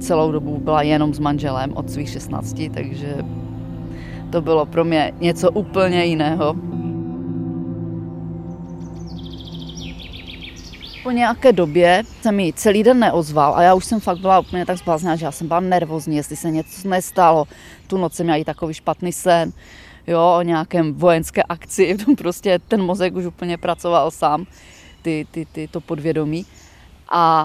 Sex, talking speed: female, 150 wpm